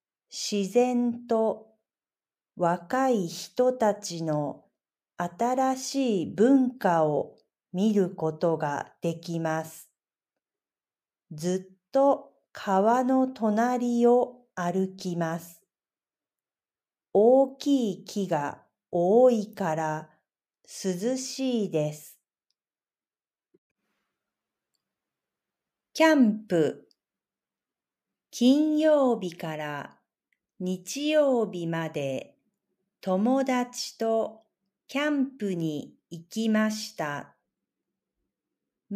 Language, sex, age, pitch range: Japanese, female, 40-59, 175-255 Hz